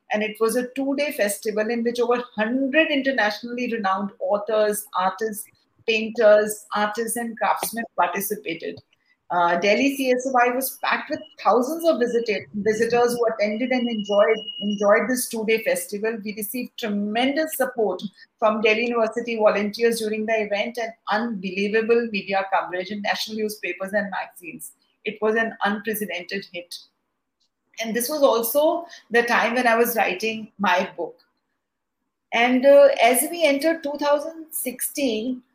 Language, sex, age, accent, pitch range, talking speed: English, female, 40-59, Indian, 210-255 Hz, 135 wpm